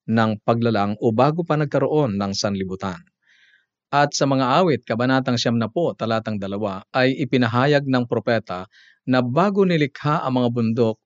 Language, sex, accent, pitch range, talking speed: Filipino, male, native, 110-135 Hz, 145 wpm